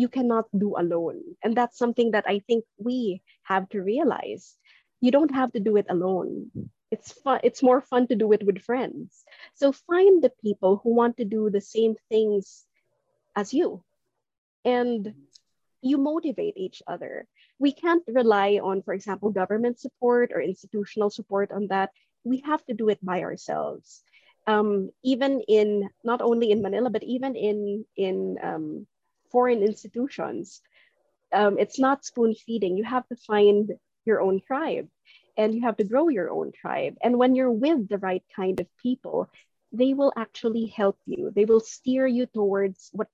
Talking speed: 170 wpm